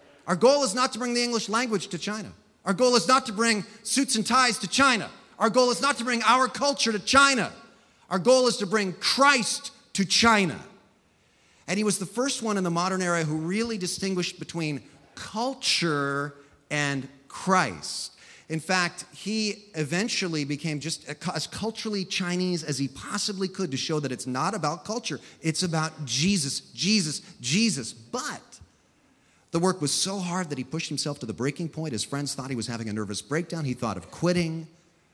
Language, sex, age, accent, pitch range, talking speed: English, male, 30-49, American, 130-205 Hz, 185 wpm